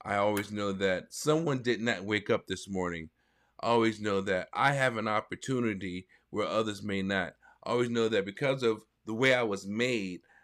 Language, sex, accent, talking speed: English, male, American, 190 wpm